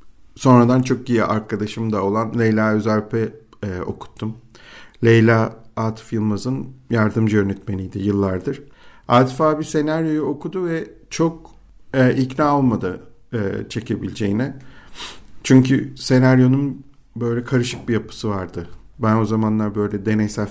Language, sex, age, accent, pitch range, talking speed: Turkish, male, 50-69, native, 105-125 Hz, 115 wpm